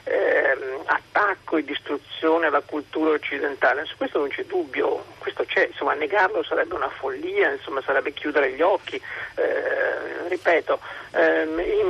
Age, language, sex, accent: 50-69, Italian, male, native